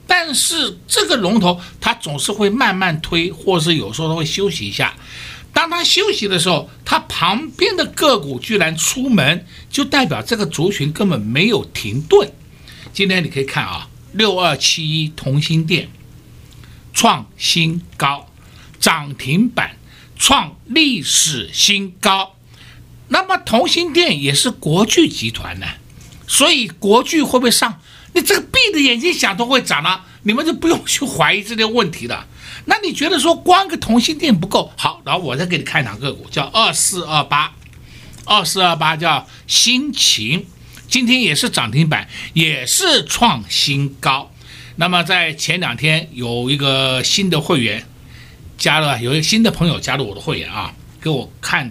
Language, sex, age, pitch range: Chinese, male, 60-79, 140-235 Hz